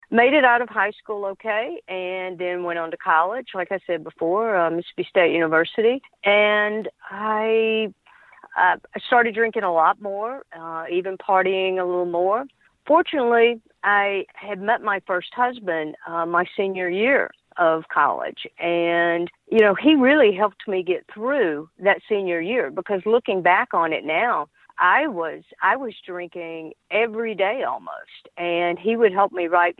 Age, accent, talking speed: 50-69, American, 165 wpm